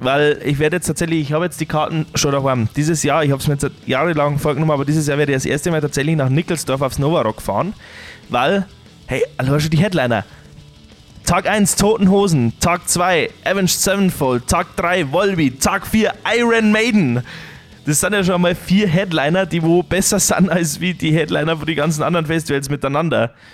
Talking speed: 195 wpm